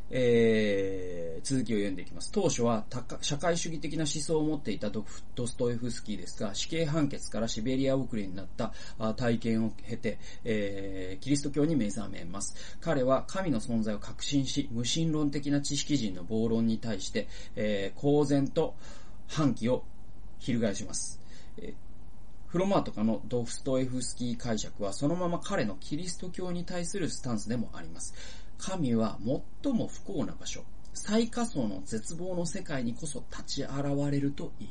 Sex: male